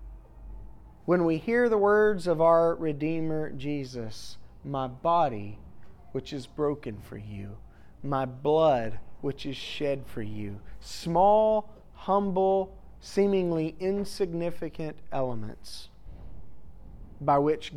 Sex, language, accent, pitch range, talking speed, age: male, English, American, 125-195 Hz, 100 wpm, 30-49